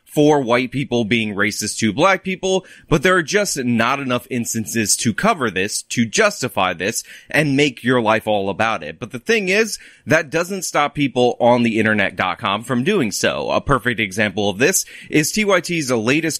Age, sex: 30-49, male